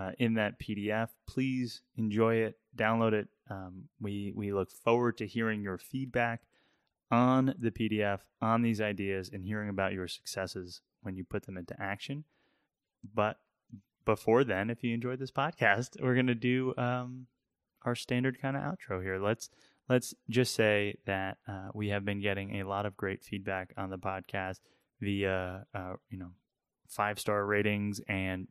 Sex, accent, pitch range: male, American, 100-125 Hz